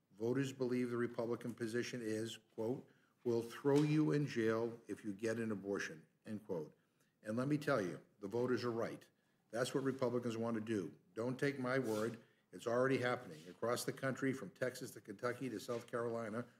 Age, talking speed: 50-69, 185 wpm